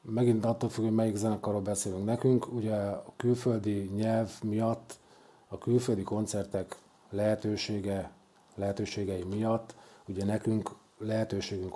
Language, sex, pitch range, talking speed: Hungarian, male, 100-120 Hz, 110 wpm